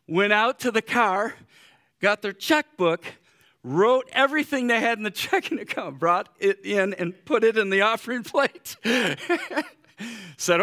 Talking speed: 150 wpm